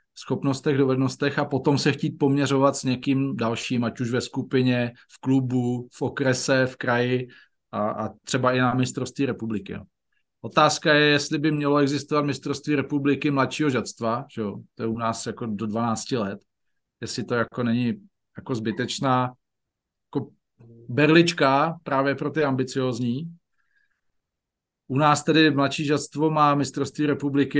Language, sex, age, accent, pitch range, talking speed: Czech, male, 40-59, native, 120-140 Hz, 150 wpm